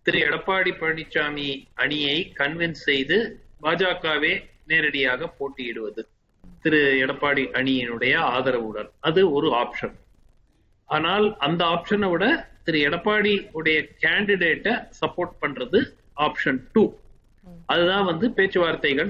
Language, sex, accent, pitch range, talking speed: Tamil, male, native, 140-180 Hz, 95 wpm